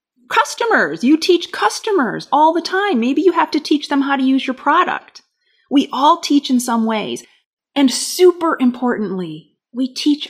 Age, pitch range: 30-49, 205-275 Hz